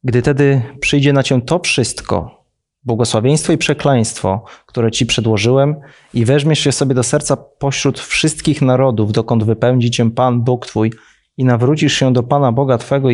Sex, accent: male, native